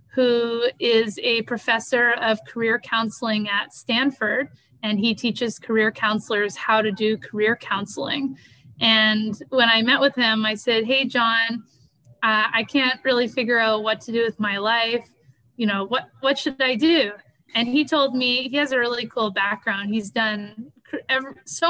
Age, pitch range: 20-39, 215-250 Hz